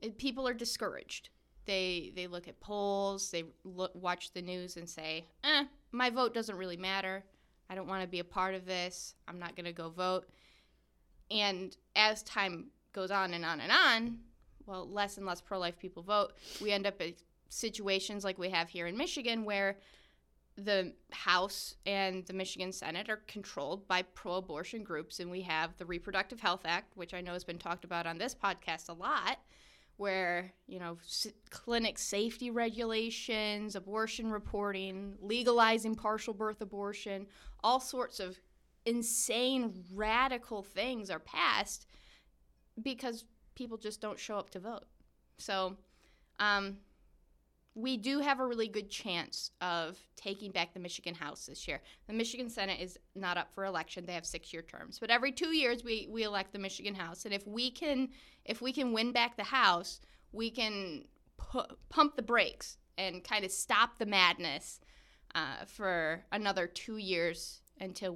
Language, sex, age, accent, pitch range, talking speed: English, female, 10-29, American, 180-225 Hz, 165 wpm